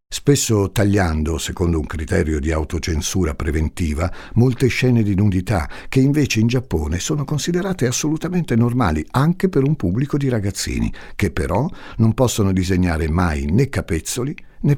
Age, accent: 60-79, native